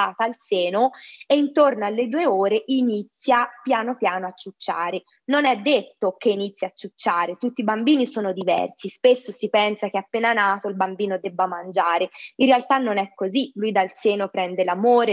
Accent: native